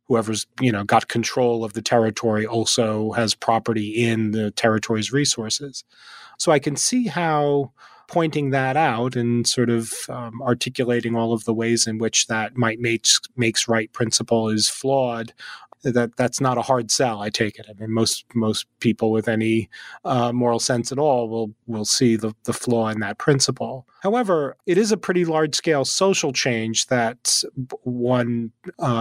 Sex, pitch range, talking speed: male, 115-140 Hz, 175 wpm